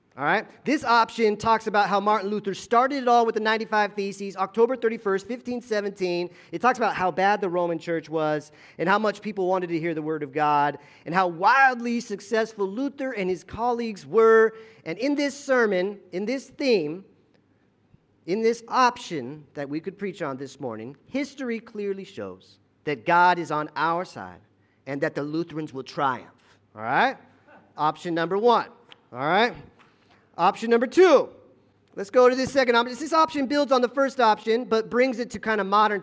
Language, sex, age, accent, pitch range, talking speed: English, male, 40-59, American, 165-235 Hz, 185 wpm